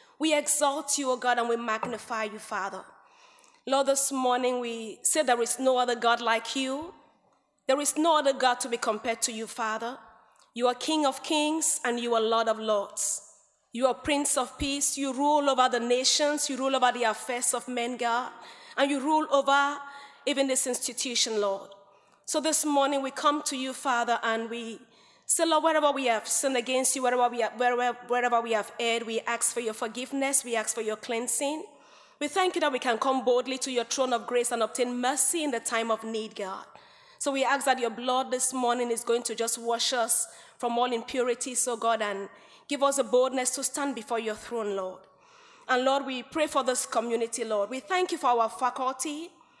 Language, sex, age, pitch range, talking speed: English, female, 30-49, 230-280 Hz, 205 wpm